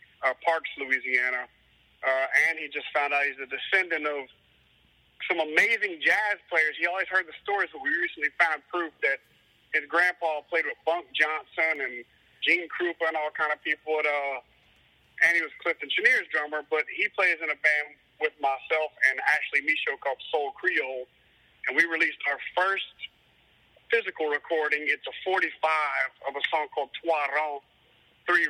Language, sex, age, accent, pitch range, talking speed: English, male, 40-59, American, 145-175 Hz, 170 wpm